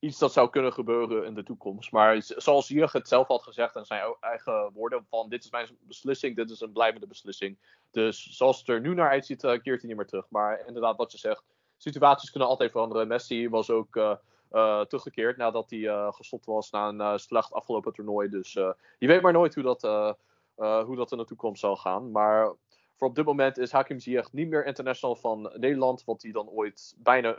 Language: Dutch